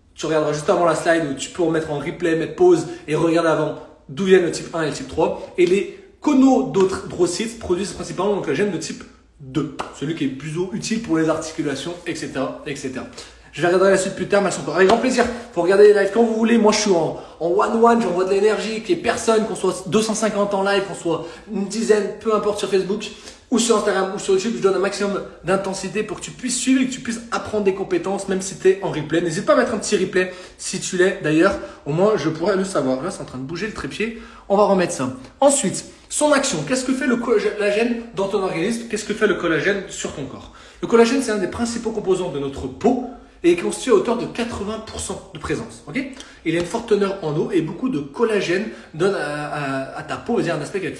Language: French